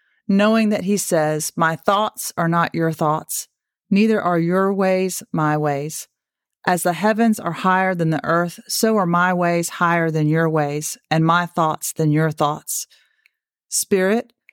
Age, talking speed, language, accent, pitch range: 40-59, 160 wpm, English, American, 165-200 Hz